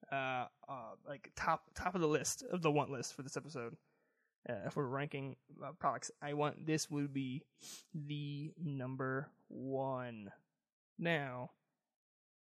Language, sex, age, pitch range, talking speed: English, male, 20-39, 135-185 Hz, 145 wpm